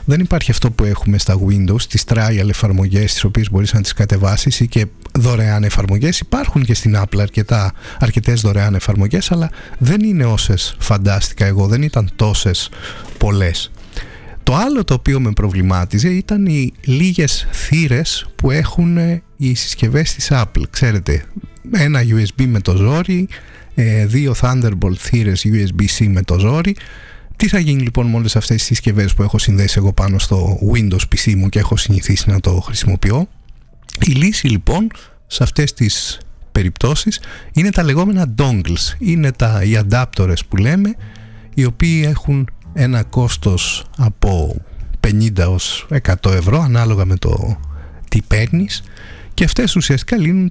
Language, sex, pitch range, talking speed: Greek, male, 100-140 Hz, 150 wpm